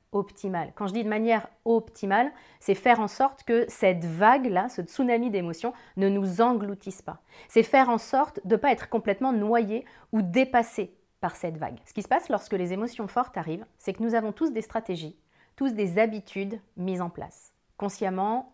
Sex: female